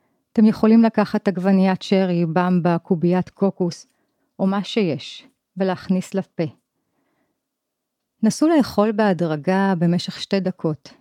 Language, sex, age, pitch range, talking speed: Hebrew, female, 40-59, 170-215 Hz, 105 wpm